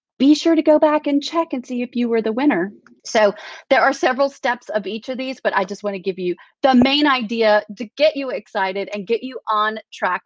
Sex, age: female, 30-49